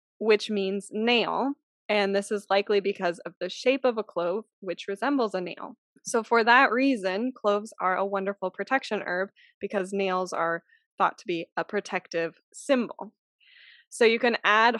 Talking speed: 165 wpm